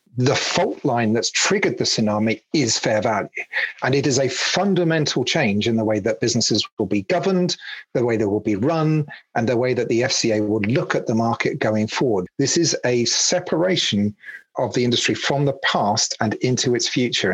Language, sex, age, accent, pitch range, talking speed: English, male, 40-59, British, 115-150 Hz, 195 wpm